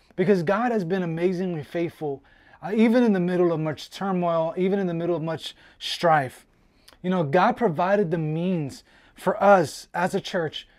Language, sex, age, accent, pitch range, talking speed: English, male, 20-39, American, 165-205 Hz, 180 wpm